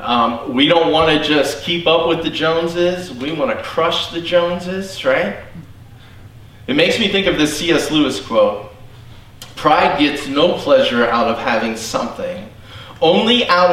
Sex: male